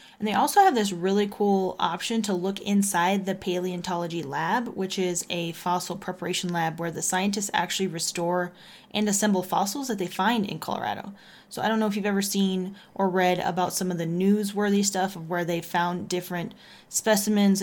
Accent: American